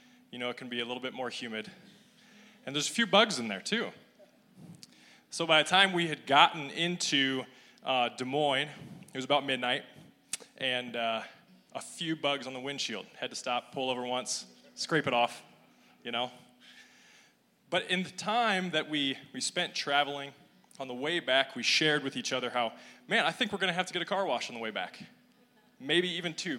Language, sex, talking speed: English, male, 205 wpm